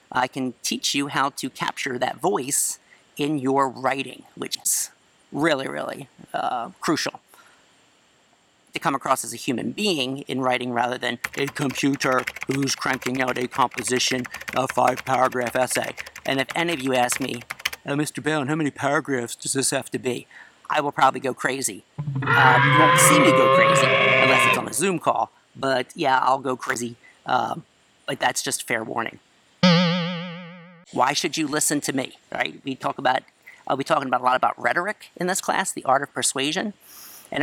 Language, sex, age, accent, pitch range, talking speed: English, male, 50-69, American, 130-155 Hz, 185 wpm